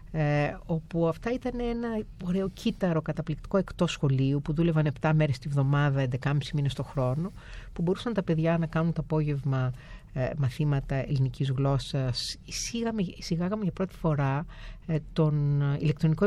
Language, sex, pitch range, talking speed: Greek, female, 140-165 Hz, 150 wpm